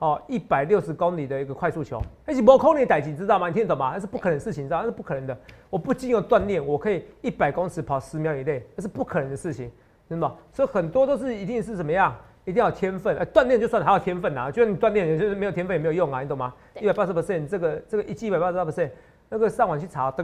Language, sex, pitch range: Chinese, male, 145-205 Hz